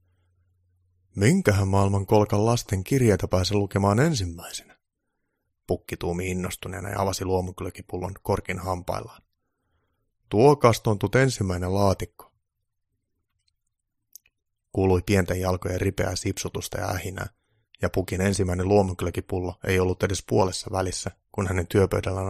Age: 30-49